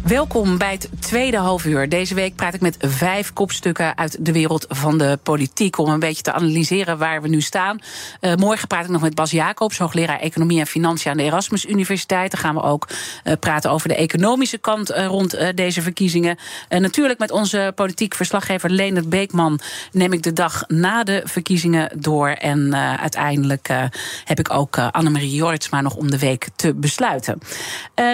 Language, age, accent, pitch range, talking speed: Dutch, 40-59, Dutch, 160-195 Hz, 195 wpm